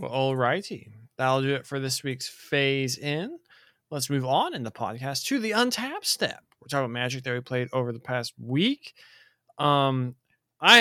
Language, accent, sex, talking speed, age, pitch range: English, American, male, 190 wpm, 20-39, 125-150 Hz